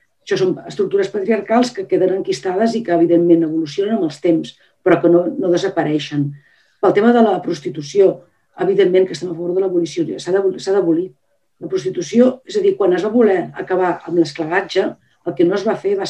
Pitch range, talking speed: 170-220 Hz, 195 wpm